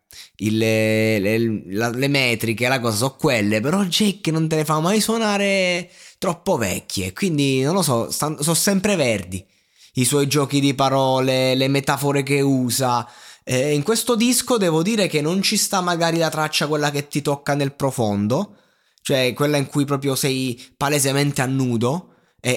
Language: Italian